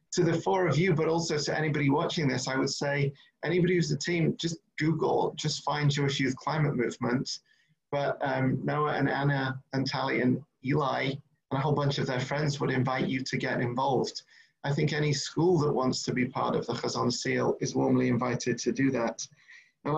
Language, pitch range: English, 130-155 Hz